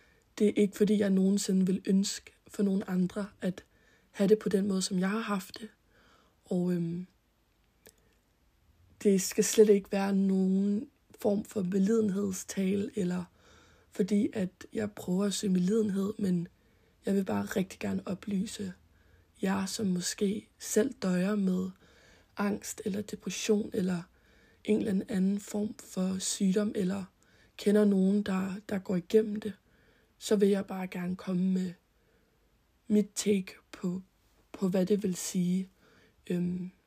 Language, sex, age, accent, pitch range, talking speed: Danish, female, 20-39, native, 185-210 Hz, 145 wpm